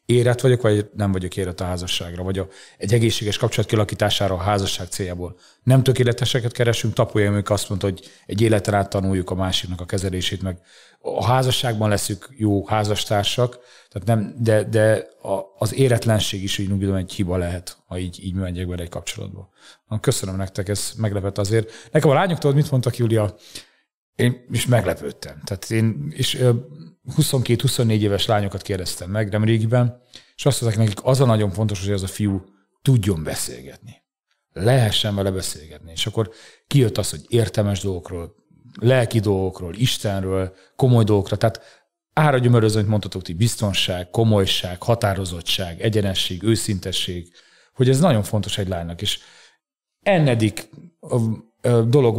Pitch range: 95-120 Hz